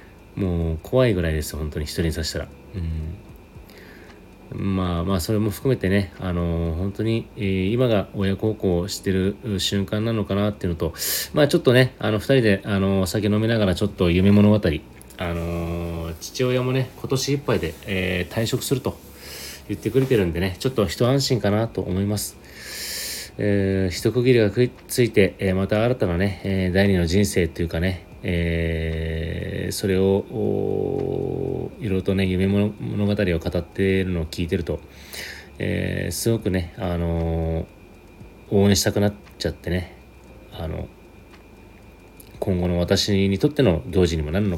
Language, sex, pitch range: Japanese, male, 85-105 Hz